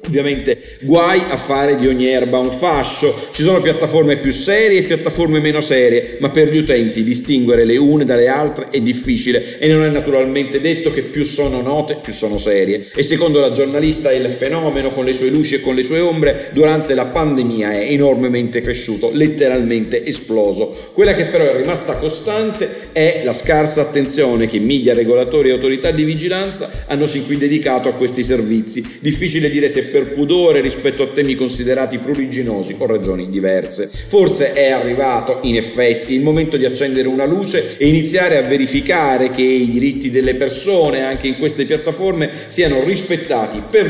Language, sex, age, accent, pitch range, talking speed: Italian, male, 40-59, native, 125-155 Hz, 175 wpm